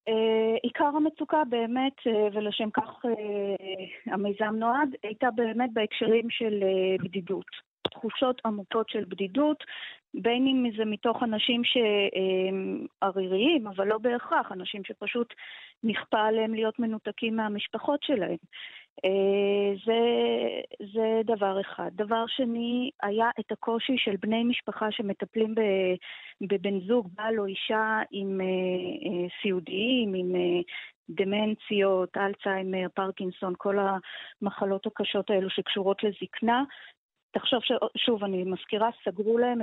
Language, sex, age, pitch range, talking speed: Hebrew, female, 30-49, 195-235 Hz, 110 wpm